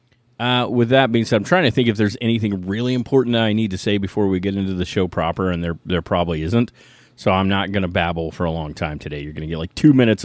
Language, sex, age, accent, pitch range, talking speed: English, male, 30-49, American, 90-120 Hz, 285 wpm